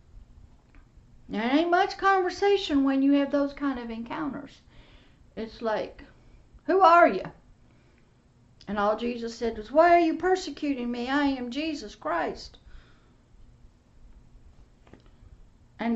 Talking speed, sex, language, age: 115 wpm, female, English, 60-79